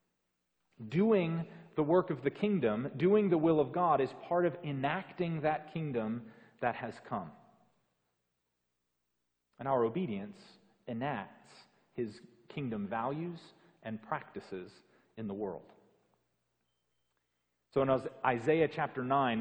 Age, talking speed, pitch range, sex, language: 40-59, 115 wpm, 110-165 Hz, male, English